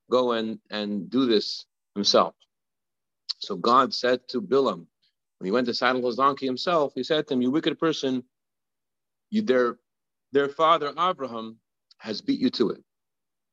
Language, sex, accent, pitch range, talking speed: English, male, American, 115-150 Hz, 160 wpm